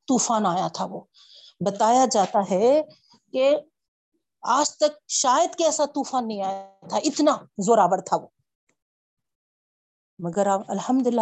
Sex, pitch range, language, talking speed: female, 195-260 Hz, Urdu, 130 wpm